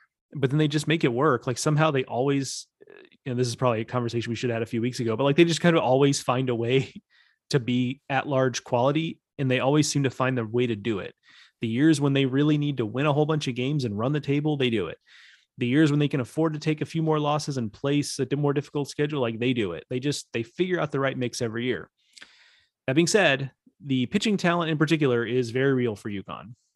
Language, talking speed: English, 260 wpm